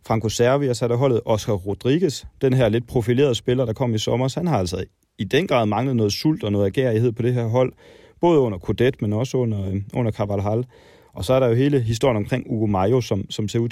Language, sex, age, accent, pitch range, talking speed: Danish, male, 30-49, native, 105-125 Hz, 235 wpm